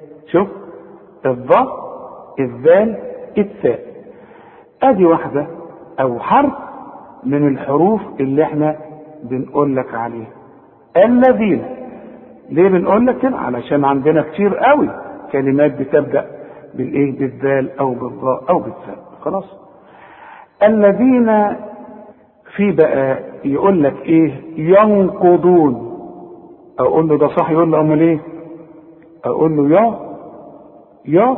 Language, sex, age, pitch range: Arabic, male, 50-69, 145-210 Hz